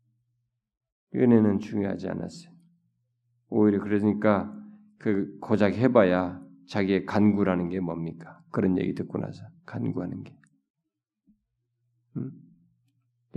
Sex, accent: male, native